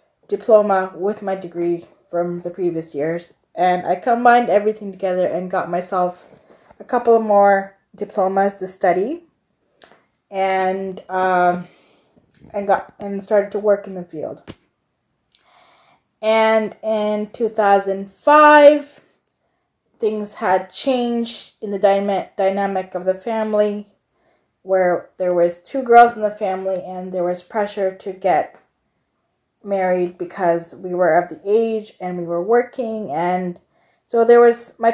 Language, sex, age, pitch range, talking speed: English, female, 20-39, 185-220 Hz, 130 wpm